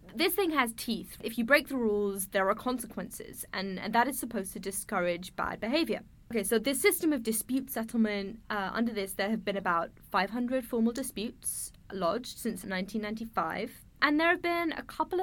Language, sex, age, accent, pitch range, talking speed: English, female, 10-29, British, 200-255 Hz, 185 wpm